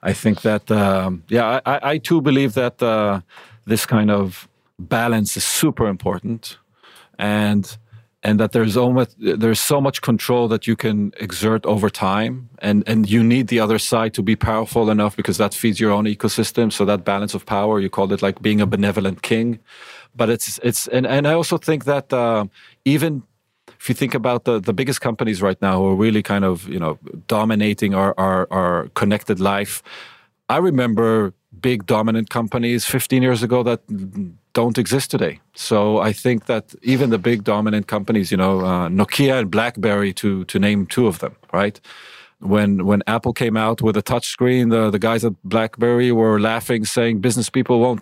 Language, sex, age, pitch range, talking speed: English, male, 40-59, 105-125 Hz, 190 wpm